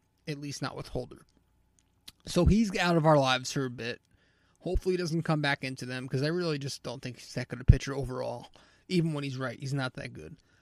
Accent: American